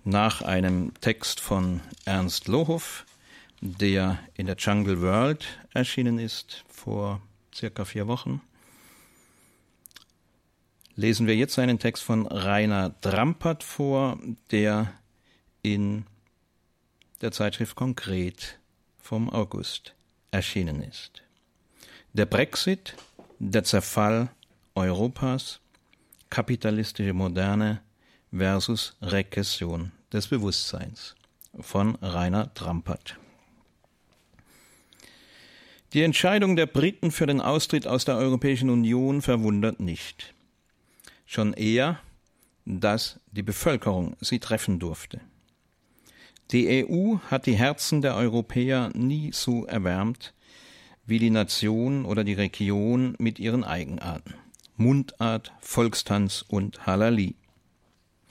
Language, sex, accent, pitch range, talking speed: German, male, German, 100-125 Hz, 95 wpm